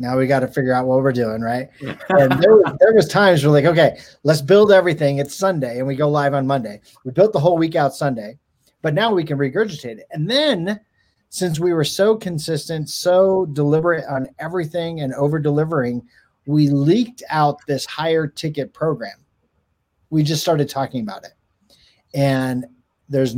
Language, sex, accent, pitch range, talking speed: English, male, American, 130-170 Hz, 175 wpm